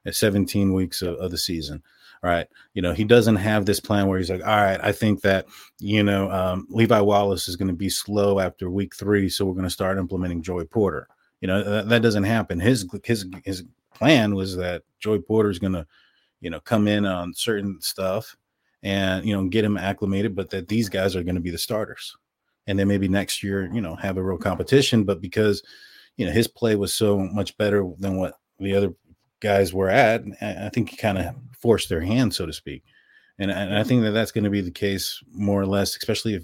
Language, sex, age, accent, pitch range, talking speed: English, male, 30-49, American, 90-105 Hz, 230 wpm